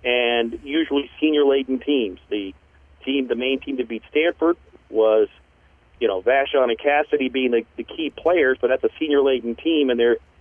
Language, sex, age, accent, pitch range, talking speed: English, male, 40-59, American, 115-165 Hz, 175 wpm